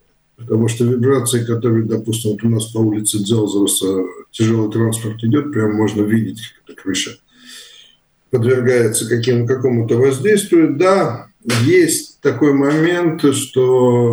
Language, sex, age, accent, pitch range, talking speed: Russian, male, 50-69, native, 110-135 Hz, 125 wpm